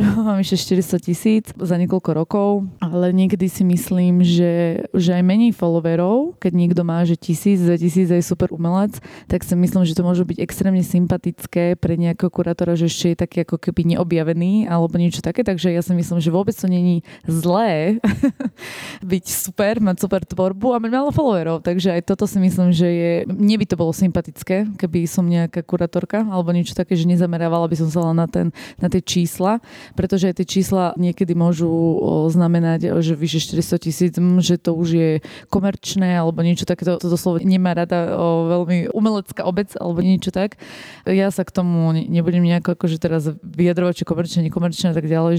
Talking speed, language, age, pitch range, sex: 185 wpm, Slovak, 20-39, 170-190 Hz, female